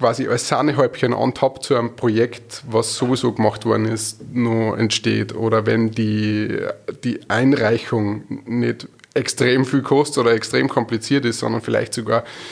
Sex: male